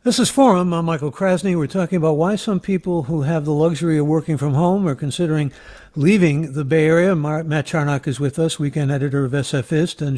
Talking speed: 210 wpm